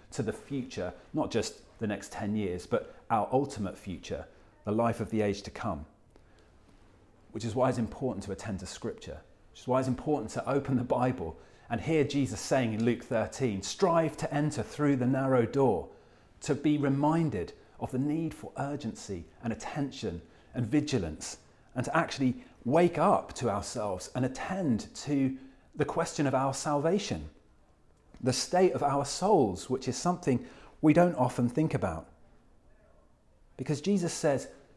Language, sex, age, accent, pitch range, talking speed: English, male, 40-59, British, 110-150 Hz, 165 wpm